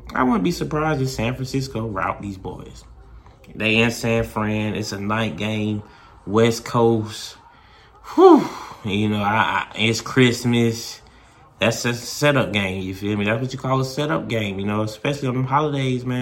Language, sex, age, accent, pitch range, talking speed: English, male, 20-39, American, 100-125 Hz, 180 wpm